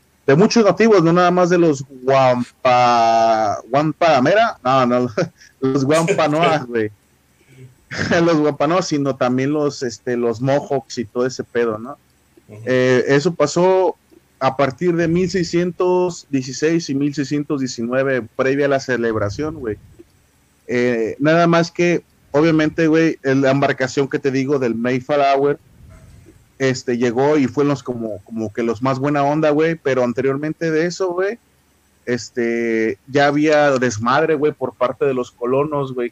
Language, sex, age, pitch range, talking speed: Spanish, male, 30-49, 120-155 Hz, 140 wpm